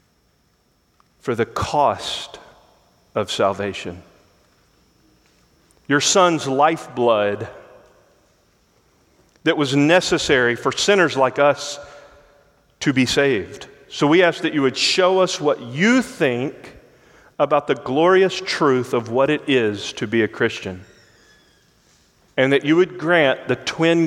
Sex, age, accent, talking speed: male, 40-59, American, 120 wpm